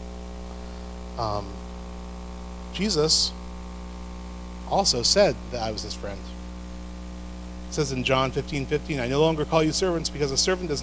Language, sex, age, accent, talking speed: English, male, 30-49, American, 140 wpm